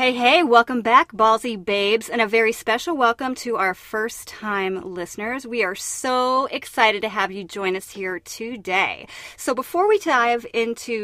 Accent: American